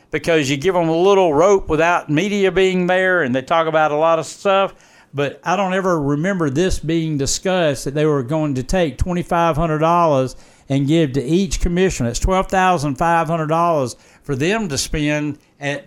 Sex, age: male, 60-79